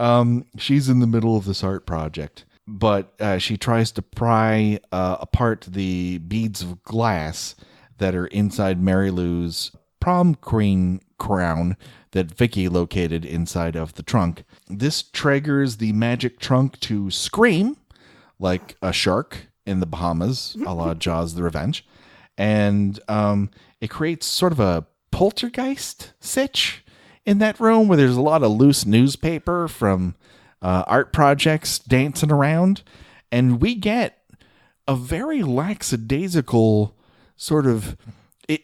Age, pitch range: 30-49, 95-145 Hz